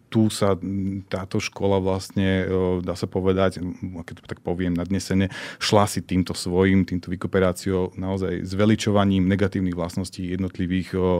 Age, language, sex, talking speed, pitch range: 30-49, Slovak, male, 130 wpm, 90-100 Hz